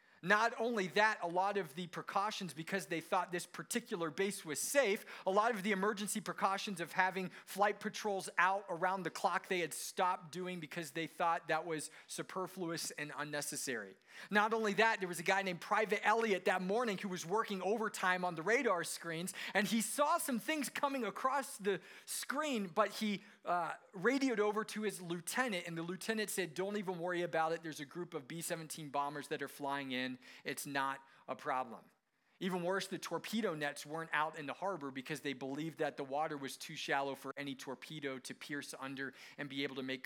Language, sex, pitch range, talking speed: English, male, 150-200 Hz, 200 wpm